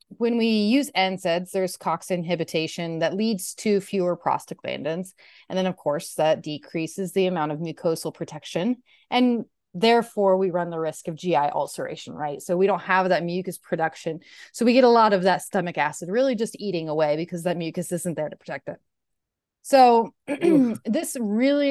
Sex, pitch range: female, 165-210 Hz